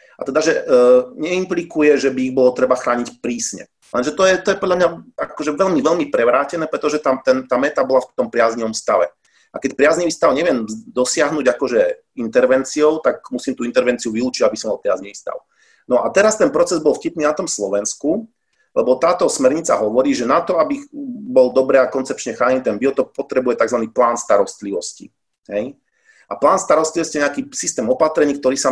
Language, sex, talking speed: Slovak, male, 180 wpm